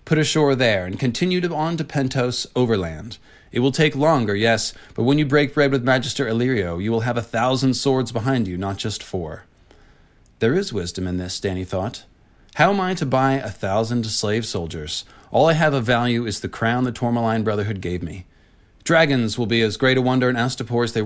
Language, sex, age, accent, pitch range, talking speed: English, male, 30-49, American, 105-140 Hz, 210 wpm